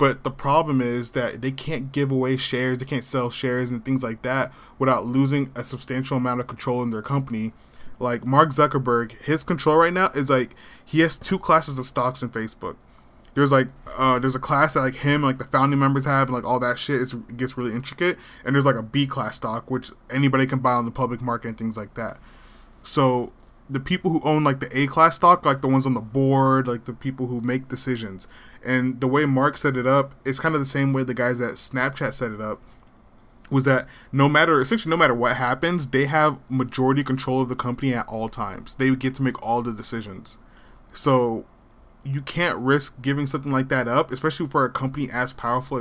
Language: English